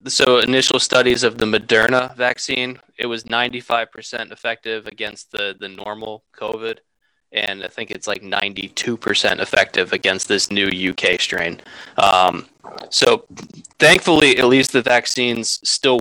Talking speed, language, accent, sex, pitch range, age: 135 wpm, English, American, male, 110-130 Hz, 20-39